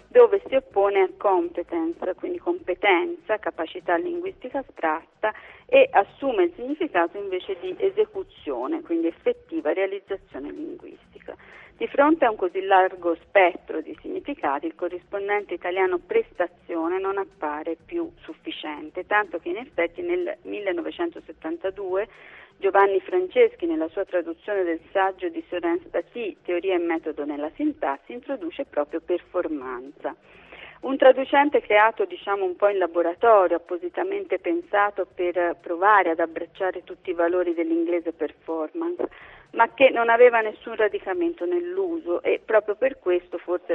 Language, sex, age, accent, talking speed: Italian, female, 40-59, native, 130 wpm